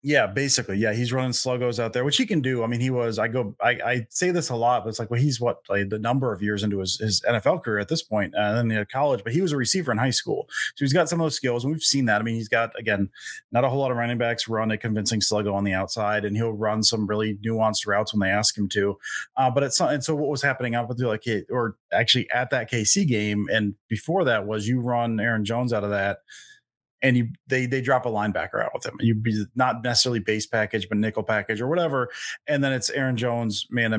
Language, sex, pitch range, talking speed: English, male, 110-130 Hz, 275 wpm